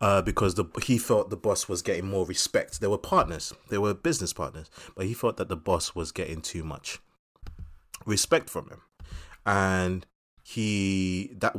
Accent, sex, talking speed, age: British, male, 175 wpm, 20-39